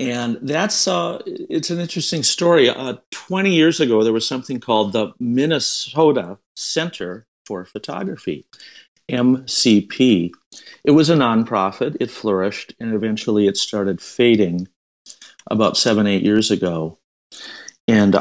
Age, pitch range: 50-69, 100-135 Hz